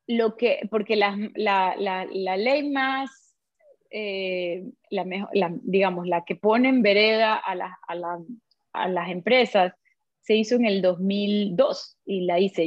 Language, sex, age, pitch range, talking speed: Spanish, female, 20-39, 190-225 Hz, 155 wpm